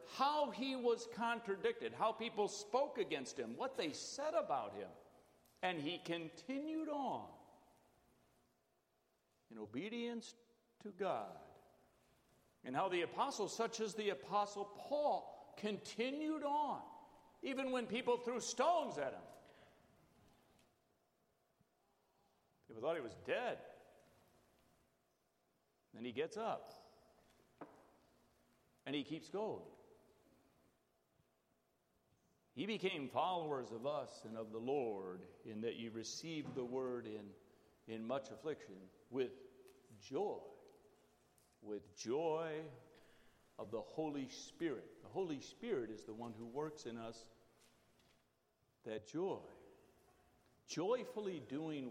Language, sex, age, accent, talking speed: English, male, 60-79, American, 110 wpm